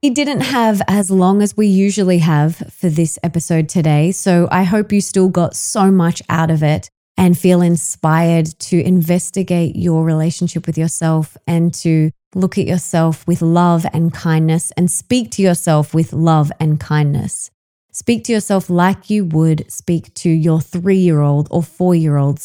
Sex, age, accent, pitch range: female, 20-39, Australian, 160-190 Hz